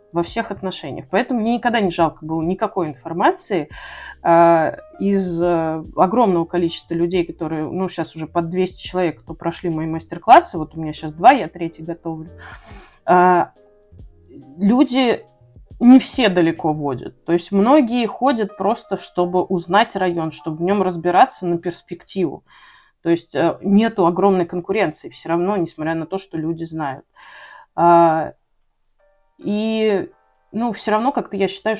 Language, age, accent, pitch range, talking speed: Russian, 30-49, native, 165-205 Hz, 140 wpm